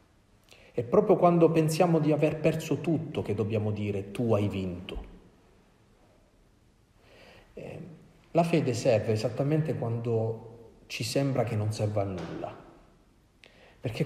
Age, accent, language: 40-59, native, Italian